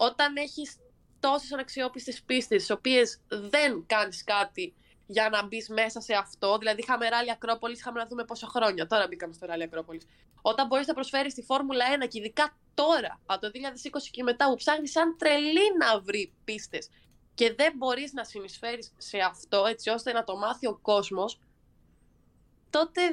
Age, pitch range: 20-39, 215-325 Hz